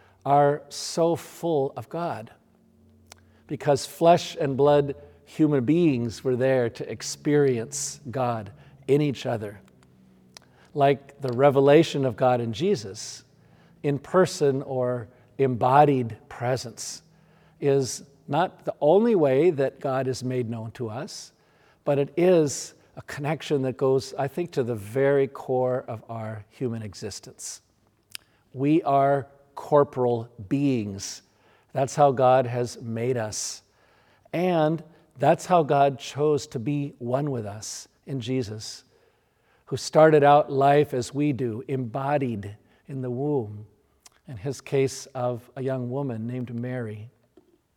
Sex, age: male, 50-69